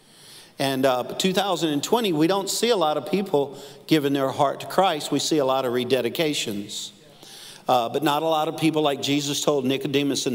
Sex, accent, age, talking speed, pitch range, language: male, American, 50-69, 195 wpm, 140-215 Hz, English